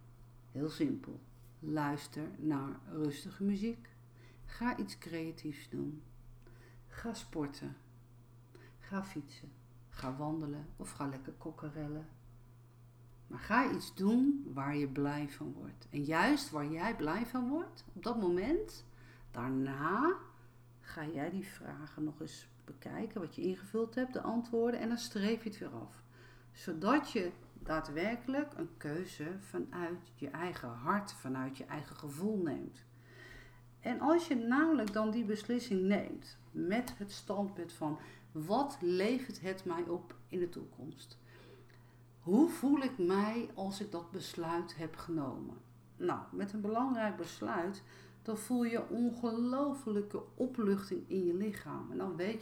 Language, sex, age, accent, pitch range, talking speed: Dutch, female, 50-69, Dutch, 125-205 Hz, 135 wpm